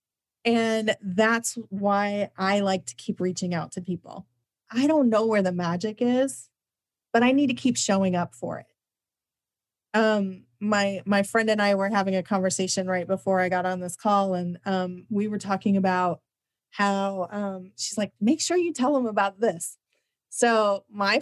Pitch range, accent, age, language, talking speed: 185-220 Hz, American, 30-49, English, 180 wpm